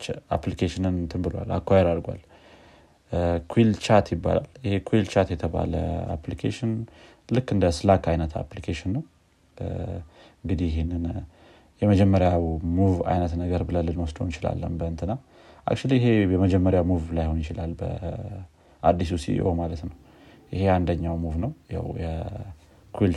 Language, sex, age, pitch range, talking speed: Amharic, male, 30-49, 85-95 Hz, 115 wpm